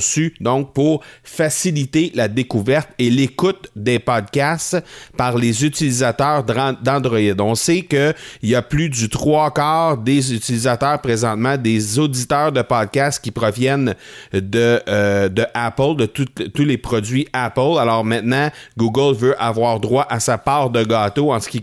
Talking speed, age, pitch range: 150 wpm, 30-49, 115-145 Hz